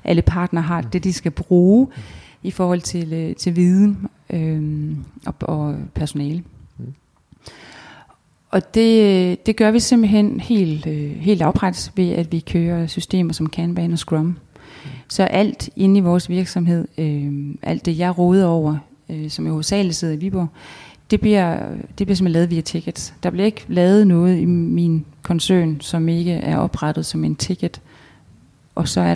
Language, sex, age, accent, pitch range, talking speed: Danish, female, 30-49, native, 165-195 Hz, 155 wpm